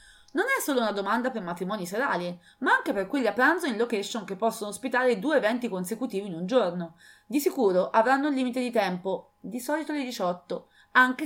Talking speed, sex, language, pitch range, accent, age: 195 wpm, female, English, 180-255 Hz, Italian, 20-39